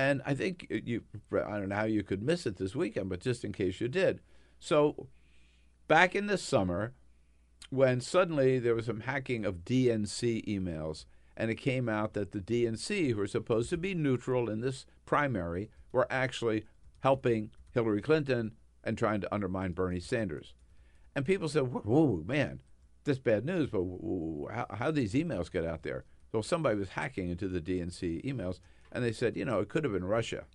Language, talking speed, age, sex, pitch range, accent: English, 195 wpm, 60-79, male, 90-135 Hz, American